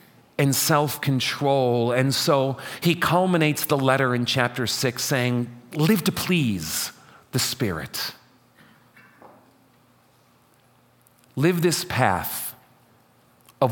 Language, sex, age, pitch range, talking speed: English, male, 40-59, 120-165 Hz, 90 wpm